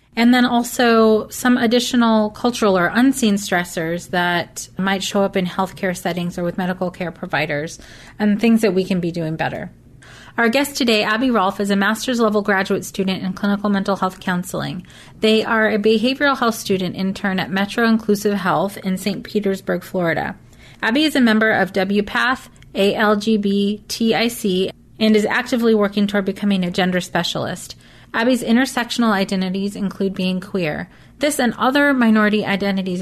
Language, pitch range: English, 190-230 Hz